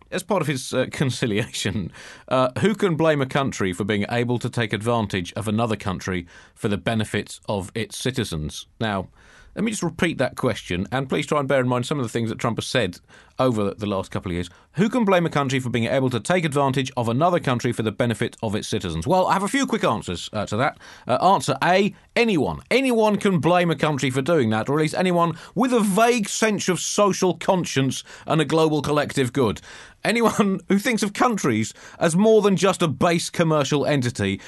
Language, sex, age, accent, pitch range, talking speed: English, male, 40-59, British, 120-175 Hz, 220 wpm